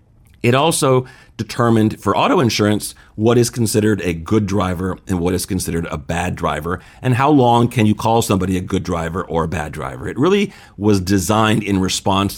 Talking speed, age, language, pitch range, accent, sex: 190 wpm, 40-59, English, 90-115 Hz, American, male